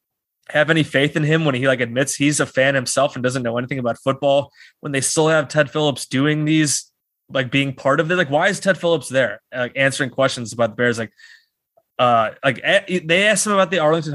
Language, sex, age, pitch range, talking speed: English, male, 20-39, 125-155 Hz, 230 wpm